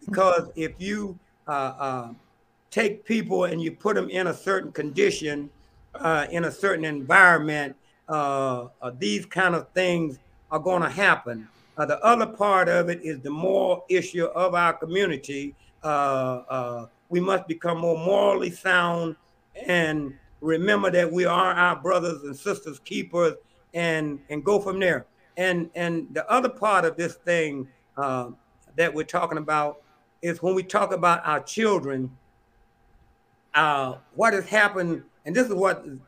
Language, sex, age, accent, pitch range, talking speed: English, male, 60-79, American, 155-195 Hz, 155 wpm